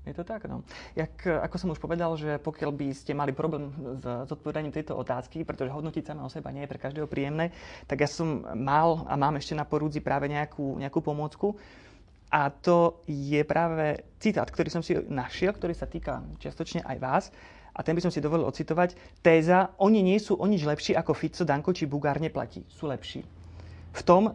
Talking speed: 200 wpm